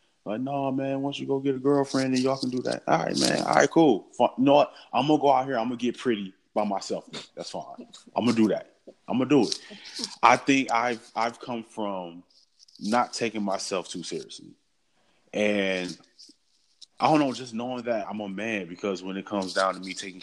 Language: English